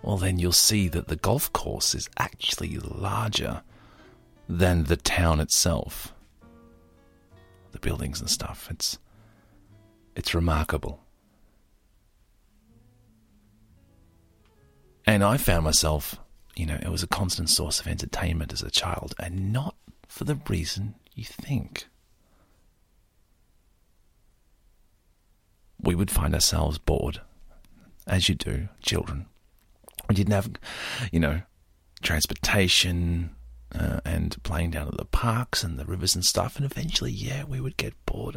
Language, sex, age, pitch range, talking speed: English, male, 40-59, 75-100 Hz, 125 wpm